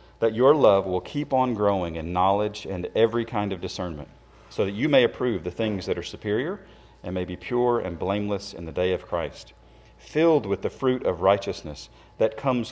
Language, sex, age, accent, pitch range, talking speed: English, male, 40-59, American, 95-120 Hz, 205 wpm